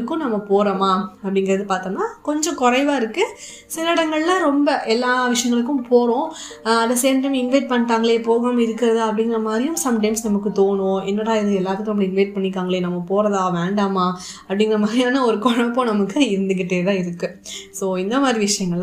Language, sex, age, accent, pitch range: Tamil, female, 20-39, native, 205-260 Hz